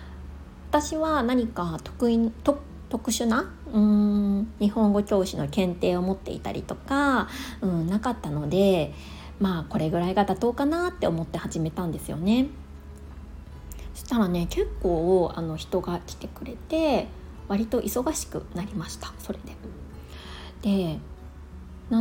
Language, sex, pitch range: Japanese, female, 150-245 Hz